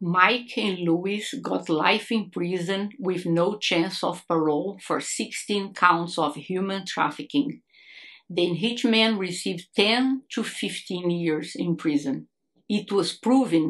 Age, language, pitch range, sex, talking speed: 50-69, English, 165-210 Hz, female, 130 wpm